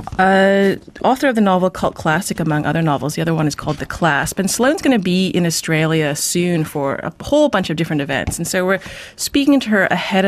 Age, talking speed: 30-49, 230 wpm